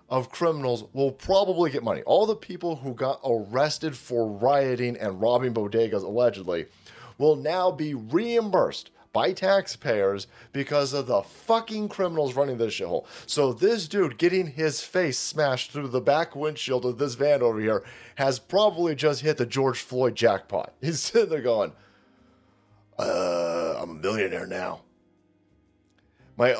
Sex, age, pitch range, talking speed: male, 30-49, 110-155 Hz, 150 wpm